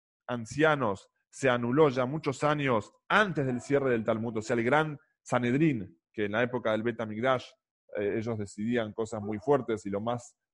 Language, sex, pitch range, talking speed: English, male, 120-155 Hz, 180 wpm